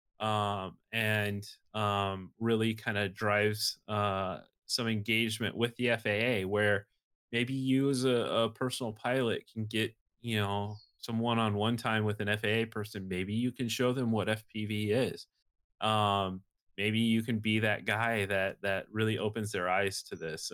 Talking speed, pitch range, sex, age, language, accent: 160 wpm, 95-110 Hz, male, 20-39, English, American